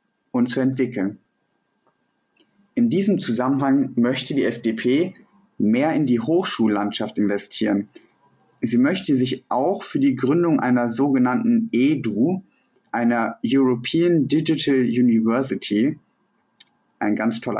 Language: German